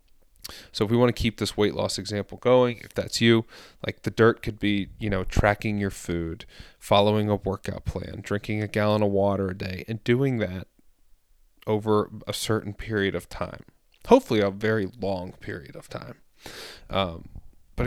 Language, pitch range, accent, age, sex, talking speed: English, 95-110 Hz, American, 30-49, male, 180 wpm